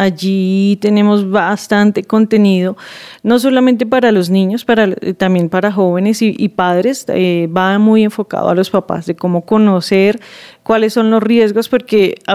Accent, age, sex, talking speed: Colombian, 30-49, female, 155 wpm